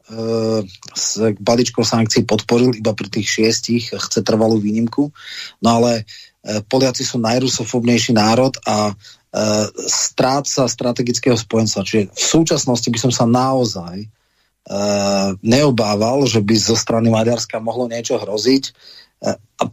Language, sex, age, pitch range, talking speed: Slovak, male, 30-49, 110-125 Hz, 115 wpm